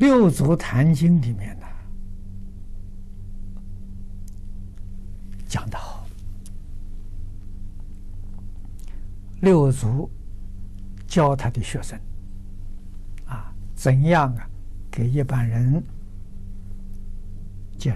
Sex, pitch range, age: male, 95-125 Hz, 60-79